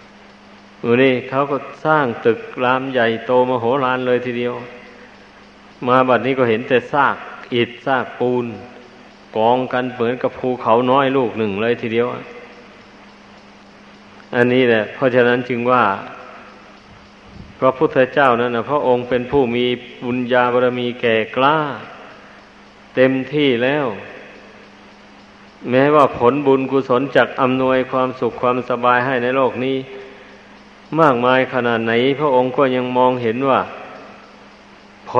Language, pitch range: Thai, 120-135 Hz